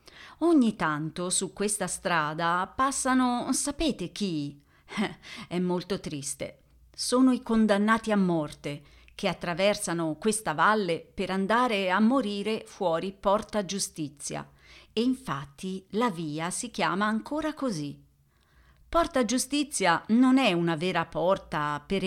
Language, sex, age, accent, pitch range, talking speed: Italian, female, 40-59, native, 165-230 Hz, 115 wpm